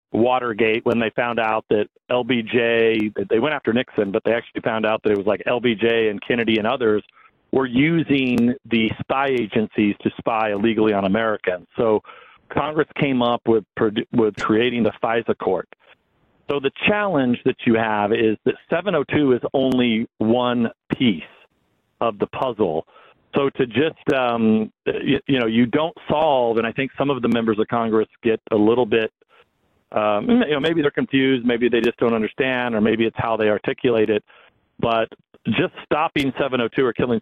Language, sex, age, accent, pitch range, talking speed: English, male, 50-69, American, 110-130 Hz, 175 wpm